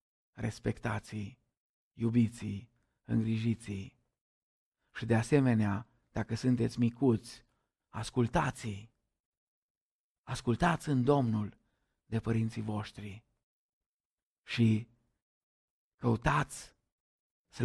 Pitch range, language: 110-125 Hz, Romanian